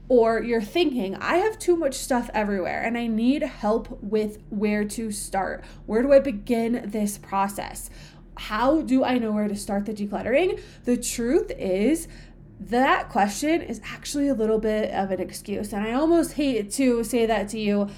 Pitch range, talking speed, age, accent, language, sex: 210-265 Hz, 180 wpm, 20-39, American, English, female